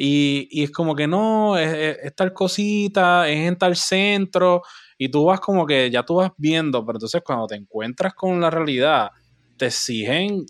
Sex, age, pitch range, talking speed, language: male, 20-39, 120-160 Hz, 195 wpm, English